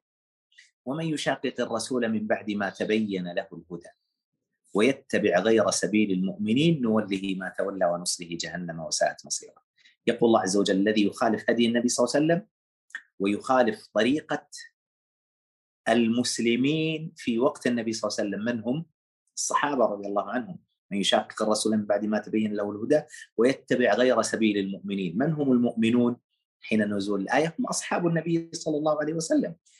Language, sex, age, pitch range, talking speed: Arabic, male, 30-49, 105-140 Hz, 150 wpm